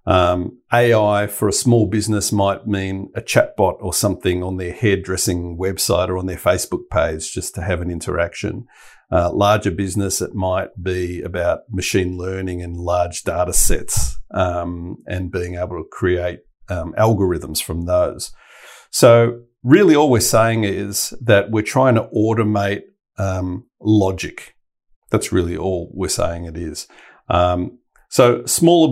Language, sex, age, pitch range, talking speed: English, male, 50-69, 90-110 Hz, 150 wpm